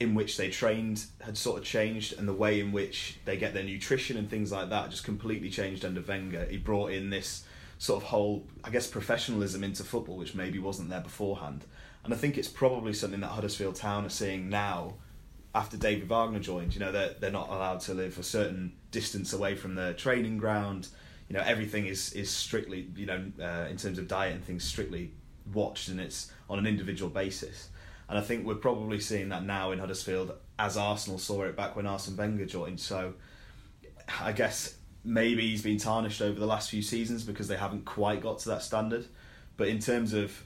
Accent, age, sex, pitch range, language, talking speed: British, 20-39, male, 95-105 Hz, English, 210 wpm